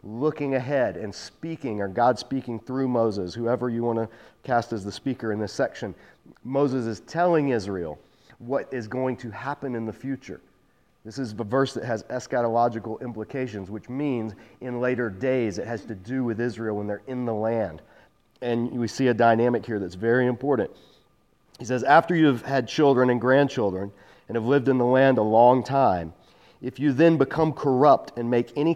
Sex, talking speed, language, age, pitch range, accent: male, 190 wpm, English, 40-59, 115-135 Hz, American